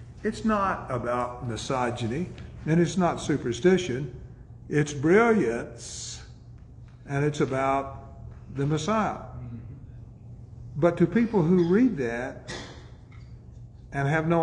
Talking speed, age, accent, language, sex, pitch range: 100 wpm, 50-69, American, English, male, 120-180 Hz